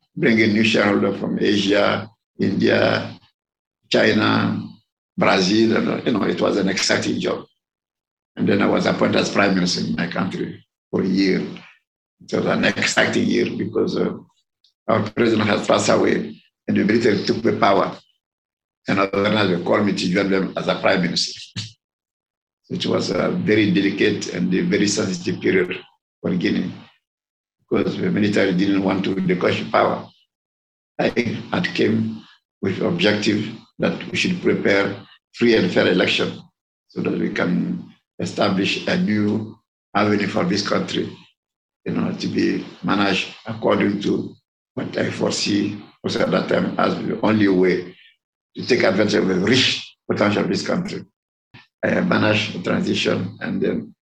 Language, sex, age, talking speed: English, male, 50-69, 155 wpm